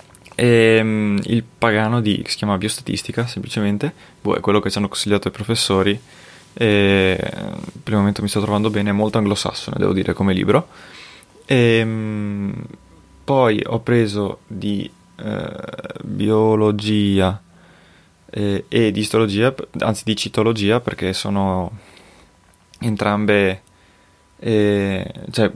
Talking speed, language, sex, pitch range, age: 120 wpm, Italian, male, 100-110 Hz, 20-39